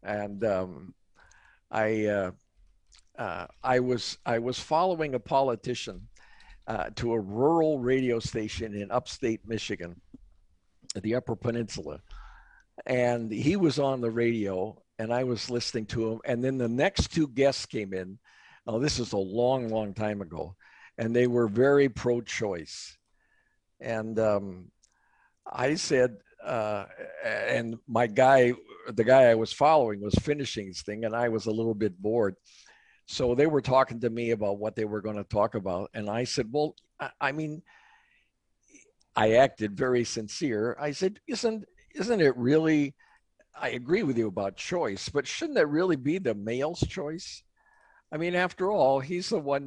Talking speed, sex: 160 wpm, male